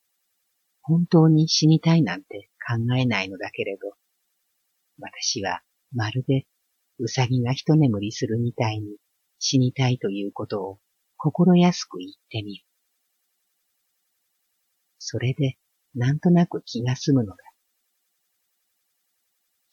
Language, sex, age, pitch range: Japanese, female, 50-69, 110-155 Hz